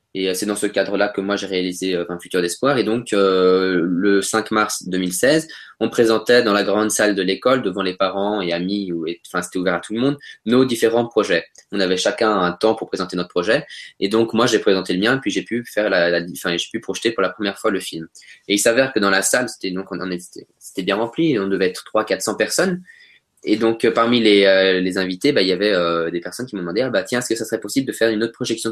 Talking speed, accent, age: 265 wpm, French, 20-39